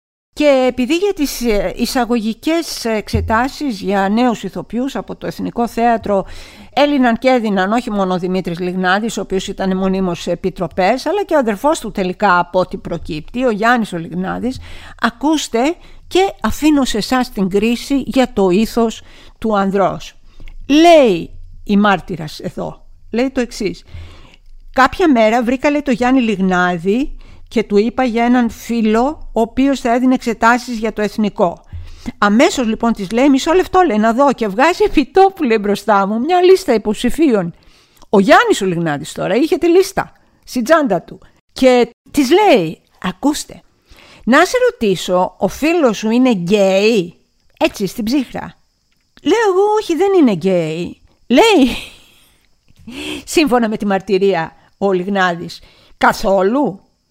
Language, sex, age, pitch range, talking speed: Greek, female, 50-69, 195-270 Hz, 140 wpm